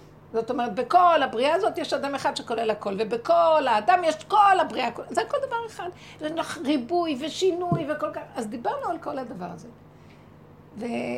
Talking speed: 170 wpm